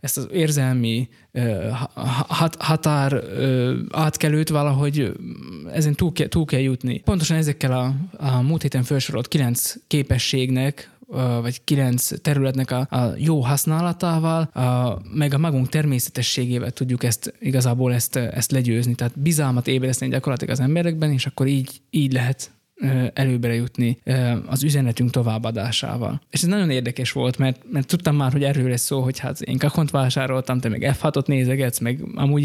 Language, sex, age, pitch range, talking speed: Hungarian, male, 20-39, 125-150 Hz, 150 wpm